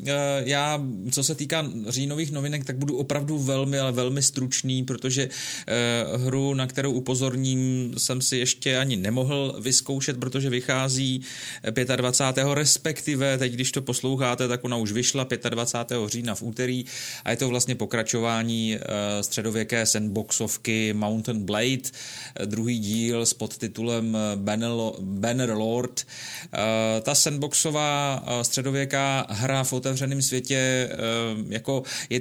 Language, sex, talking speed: Czech, male, 115 wpm